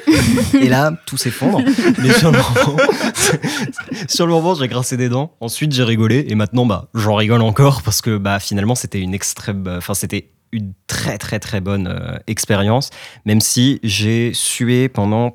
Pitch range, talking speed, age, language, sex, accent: 100-125 Hz, 175 wpm, 20-39, French, male, French